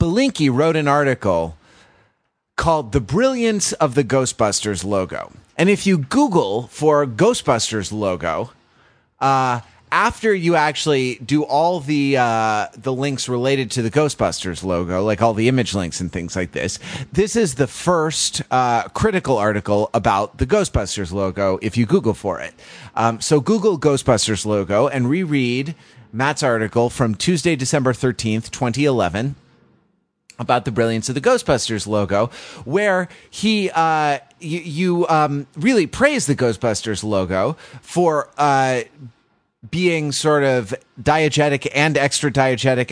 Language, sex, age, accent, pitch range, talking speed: English, male, 30-49, American, 115-150 Hz, 135 wpm